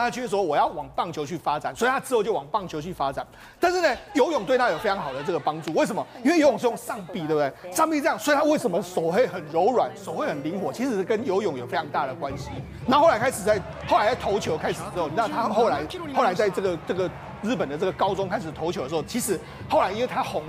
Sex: male